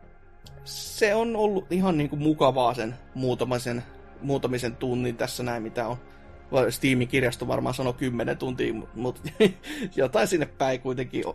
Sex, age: male, 30-49